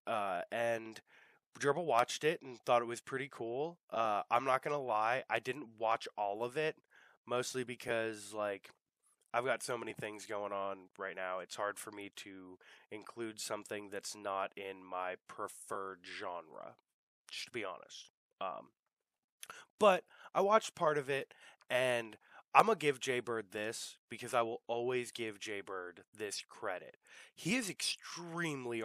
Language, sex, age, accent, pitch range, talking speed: English, male, 20-39, American, 105-135 Hz, 160 wpm